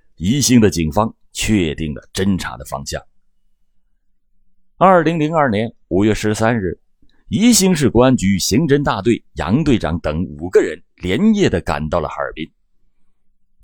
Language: Chinese